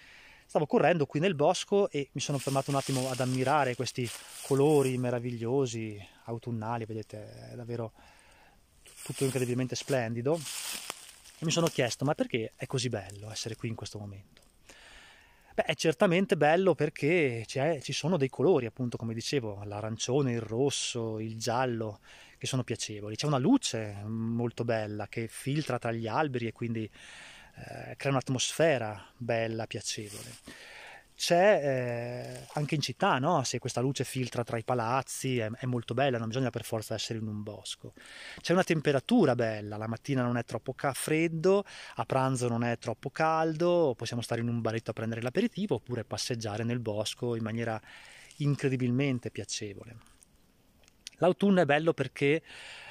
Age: 20-39